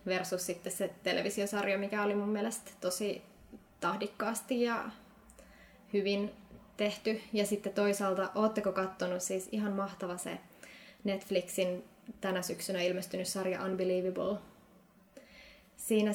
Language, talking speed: Finnish, 110 wpm